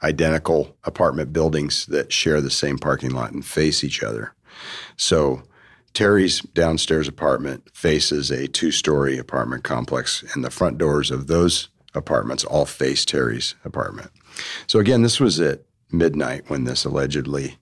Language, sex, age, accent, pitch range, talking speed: English, male, 40-59, American, 75-95 Hz, 145 wpm